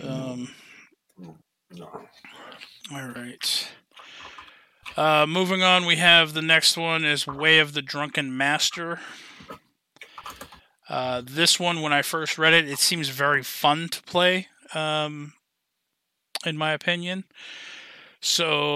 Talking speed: 115 wpm